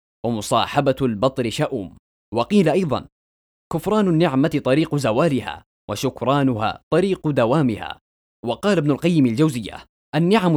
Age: 20-39